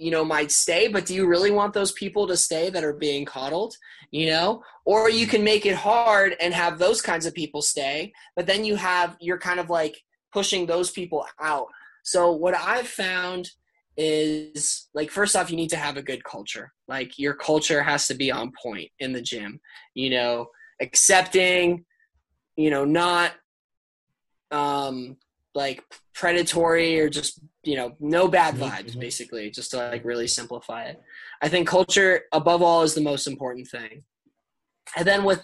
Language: English